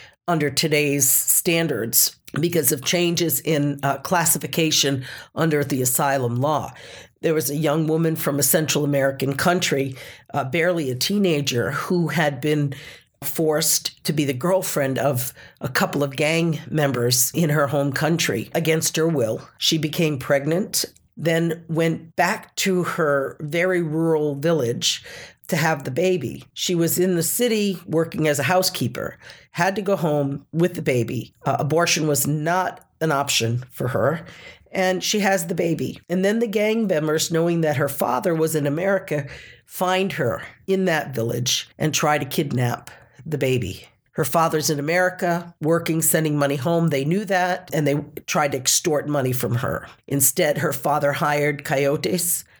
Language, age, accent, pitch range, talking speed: English, 50-69, American, 140-170 Hz, 160 wpm